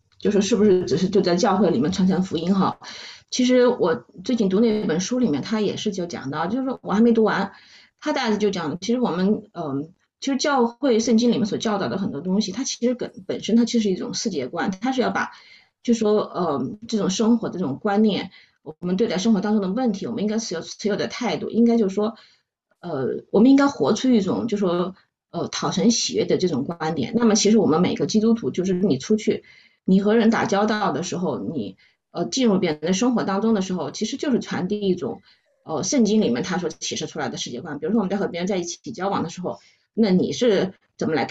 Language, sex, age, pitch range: English, female, 30-49, 185-235 Hz